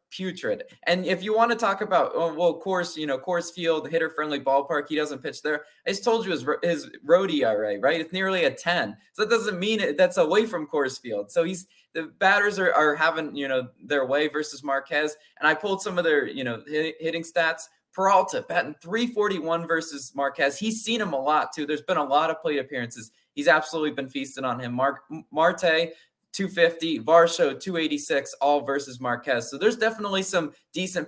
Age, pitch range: 20-39, 140-185 Hz